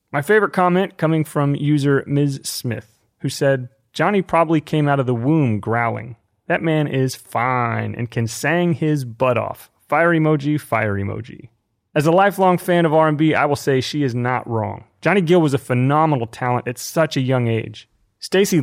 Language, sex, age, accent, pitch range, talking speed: English, male, 30-49, American, 125-165 Hz, 185 wpm